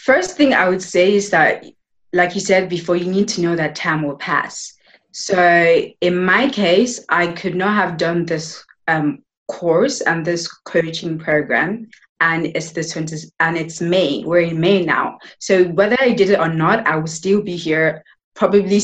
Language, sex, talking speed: English, female, 190 wpm